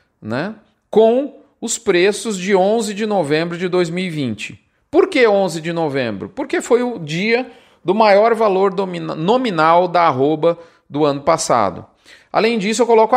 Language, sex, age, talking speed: Portuguese, male, 40-59, 145 wpm